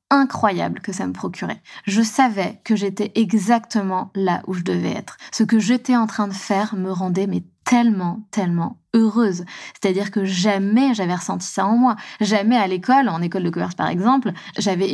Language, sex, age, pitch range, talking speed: French, female, 20-39, 190-235 Hz, 185 wpm